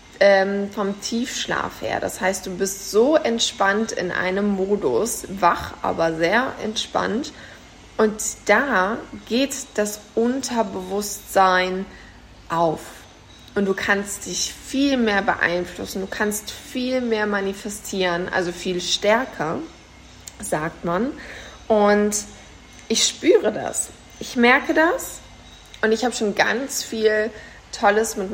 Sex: female